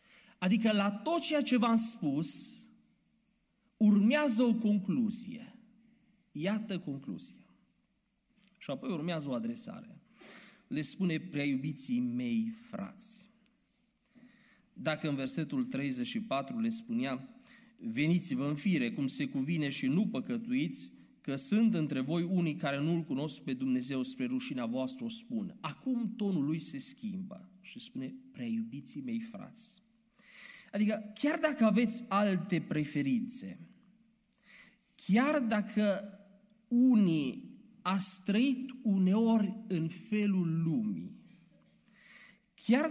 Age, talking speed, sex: 40-59, 110 wpm, male